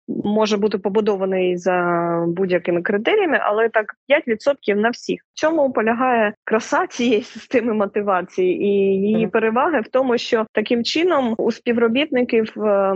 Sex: female